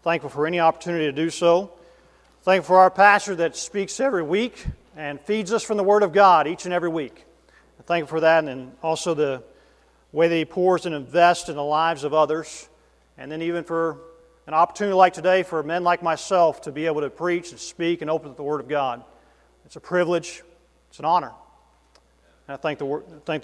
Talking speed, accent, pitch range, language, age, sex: 200 wpm, American, 150-175 Hz, English, 40-59, male